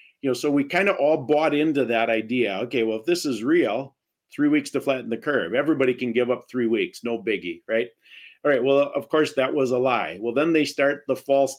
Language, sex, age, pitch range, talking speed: English, male, 50-69, 125-155 Hz, 245 wpm